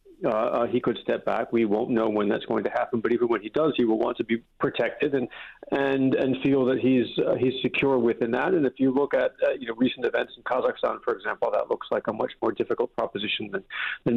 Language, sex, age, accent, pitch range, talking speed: English, male, 40-59, American, 125-150 Hz, 255 wpm